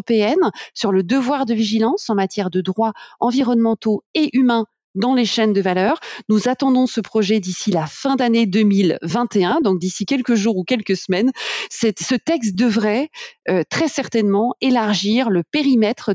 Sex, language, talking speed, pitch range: female, French, 160 wpm, 200-270 Hz